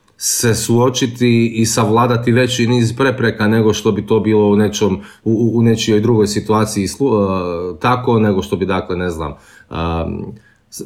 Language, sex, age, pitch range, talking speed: Croatian, male, 30-49, 100-120 Hz, 155 wpm